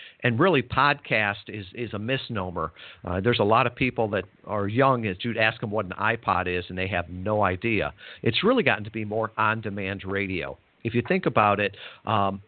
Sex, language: male, English